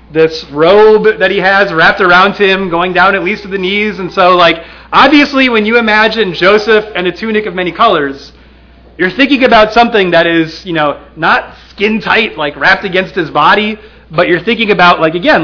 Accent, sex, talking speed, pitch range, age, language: American, male, 200 wpm, 160-215 Hz, 30-49, English